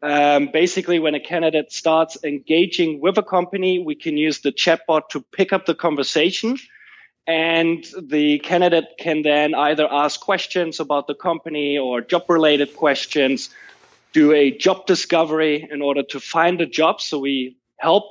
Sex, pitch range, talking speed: male, 140-165 Hz, 155 wpm